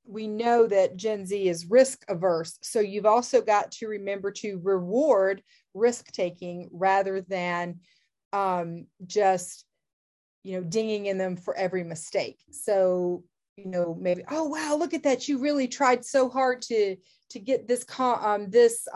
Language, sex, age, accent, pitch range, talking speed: English, female, 30-49, American, 180-225 Hz, 160 wpm